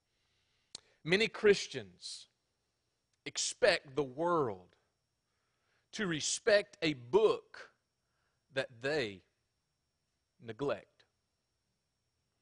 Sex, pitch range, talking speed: male, 135-210 Hz, 60 wpm